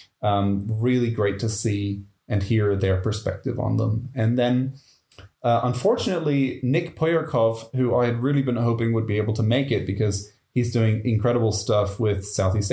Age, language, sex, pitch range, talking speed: 20-39, English, male, 105-125 Hz, 170 wpm